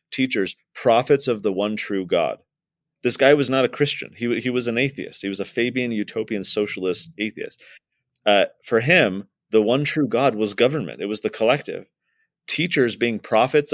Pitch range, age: 100-135 Hz, 30-49